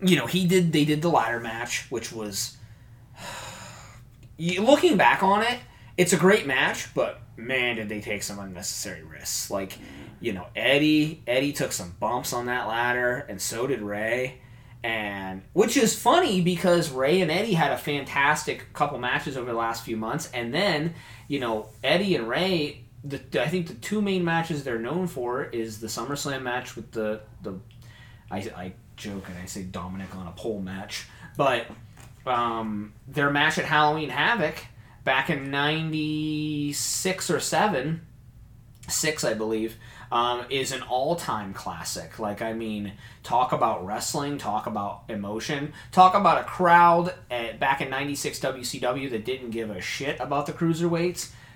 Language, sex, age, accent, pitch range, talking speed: English, male, 20-39, American, 115-150 Hz, 165 wpm